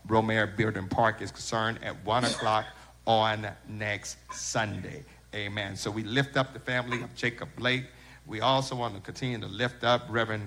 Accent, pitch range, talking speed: American, 105-125 Hz, 170 wpm